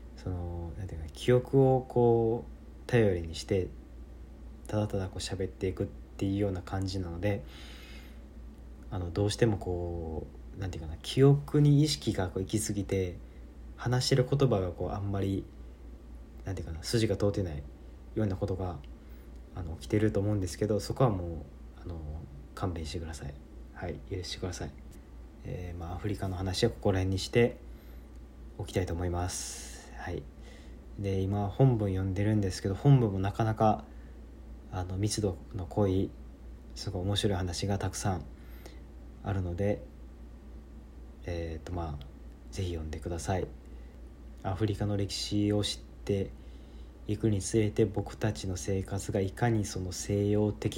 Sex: male